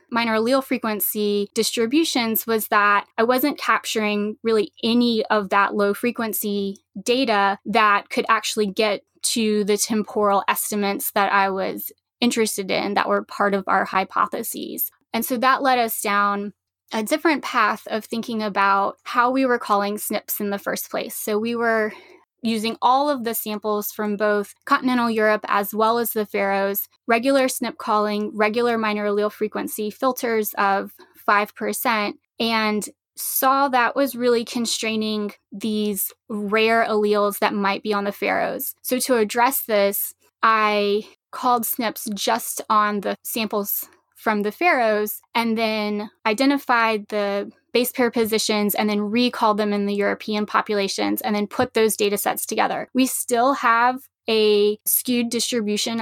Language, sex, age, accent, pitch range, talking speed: English, female, 10-29, American, 205-235 Hz, 150 wpm